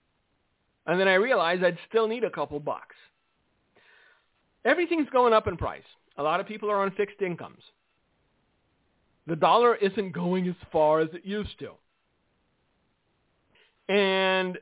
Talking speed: 140 wpm